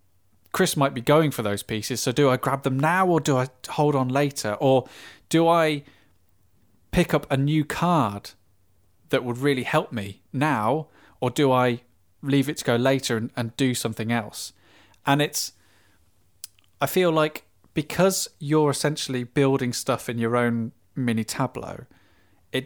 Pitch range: 105-140 Hz